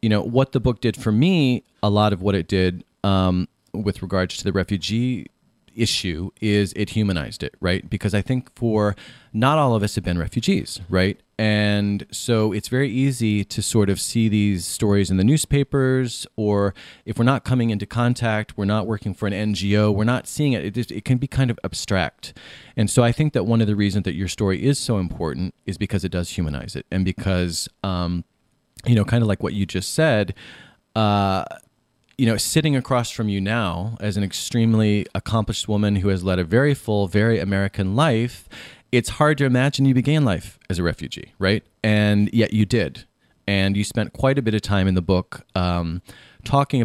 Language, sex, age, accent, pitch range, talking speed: English, male, 30-49, American, 95-120 Hz, 205 wpm